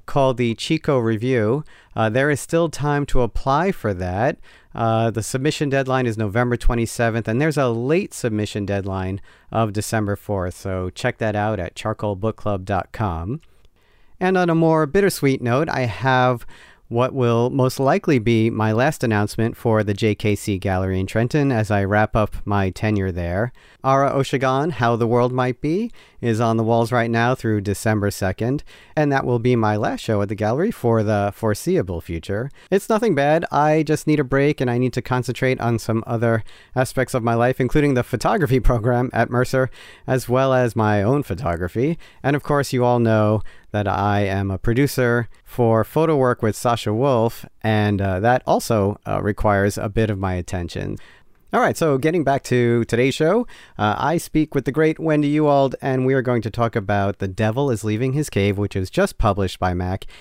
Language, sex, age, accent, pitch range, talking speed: English, male, 40-59, American, 105-135 Hz, 190 wpm